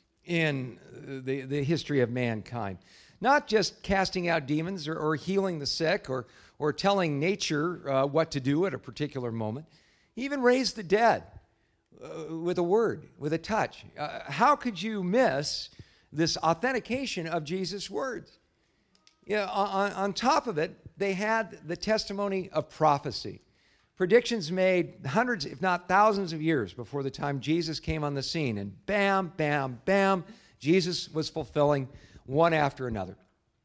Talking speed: 160 wpm